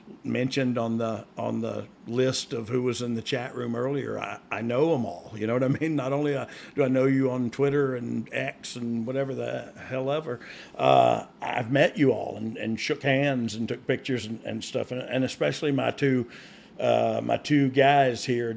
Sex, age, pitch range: male, 50-69, 120-140 Hz